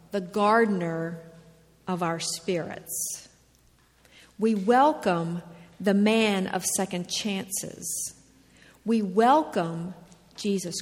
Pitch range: 180-240 Hz